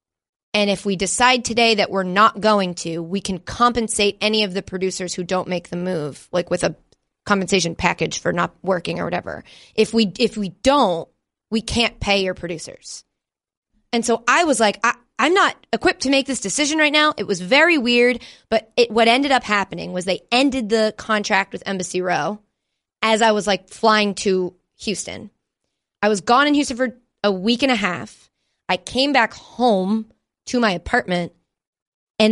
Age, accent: 20-39, American